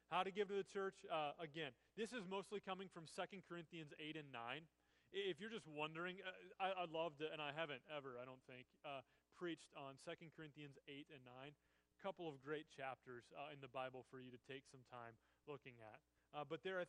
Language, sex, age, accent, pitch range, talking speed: English, male, 30-49, American, 140-175 Hz, 225 wpm